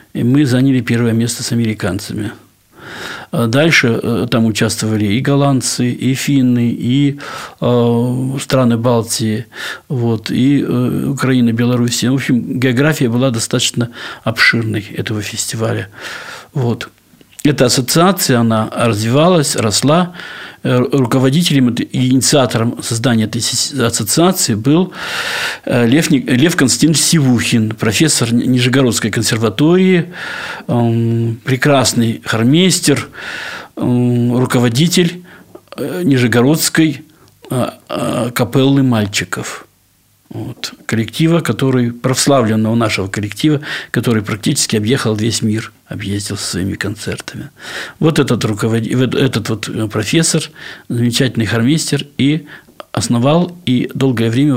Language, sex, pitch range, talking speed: Russian, male, 115-140 Hz, 85 wpm